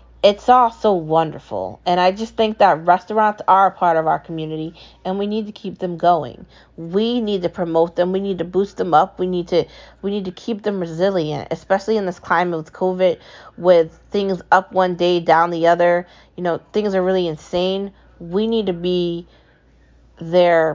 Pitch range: 165-195 Hz